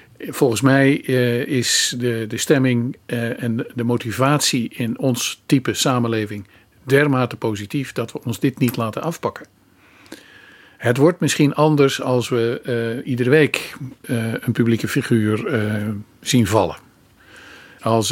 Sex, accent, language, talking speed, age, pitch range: male, Dutch, Dutch, 135 wpm, 50-69, 115-135 Hz